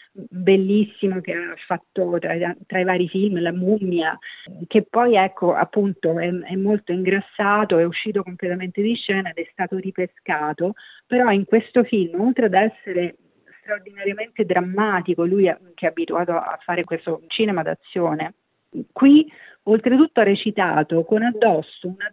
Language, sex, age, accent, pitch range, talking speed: Italian, female, 40-59, native, 175-220 Hz, 150 wpm